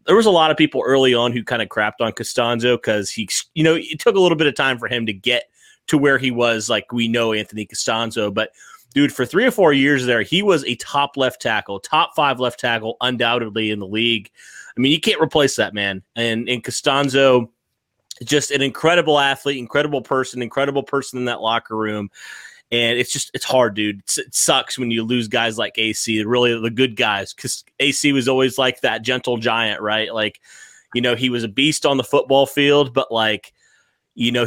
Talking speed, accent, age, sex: 215 wpm, American, 30-49, male